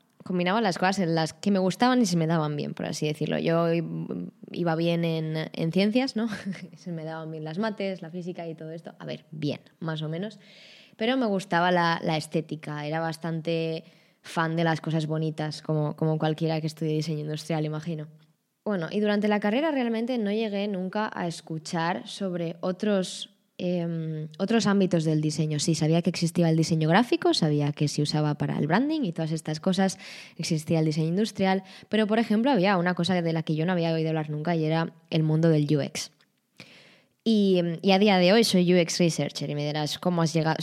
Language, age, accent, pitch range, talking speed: Spanish, 20-39, Spanish, 160-200 Hz, 200 wpm